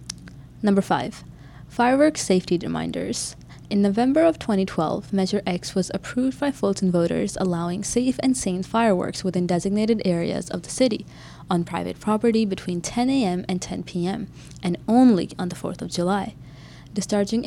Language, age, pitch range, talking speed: English, 20-39, 180-230 Hz, 150 wpm